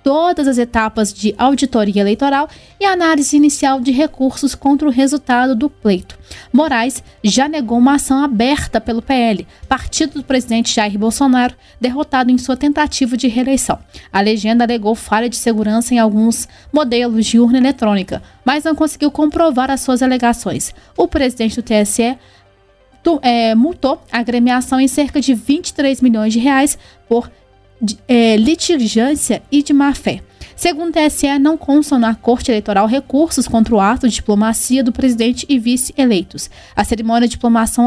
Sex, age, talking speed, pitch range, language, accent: female, 20-39, 155 wpm, 230-285 Hz, Portuguese, Brazilian